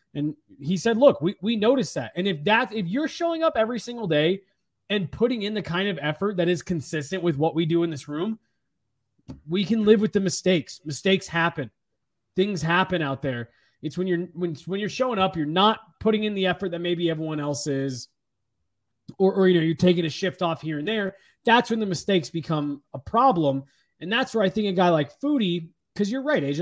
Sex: male